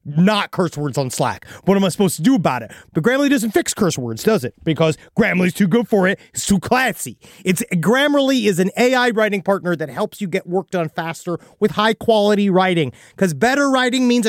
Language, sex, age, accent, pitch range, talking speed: English, male, 30-49, American, 170-235 Hz, 220 wpm